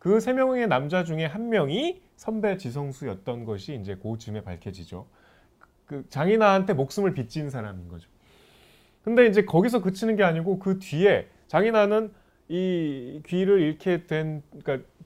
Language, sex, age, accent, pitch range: Korean, male, 30-49, native, 125-200 Hz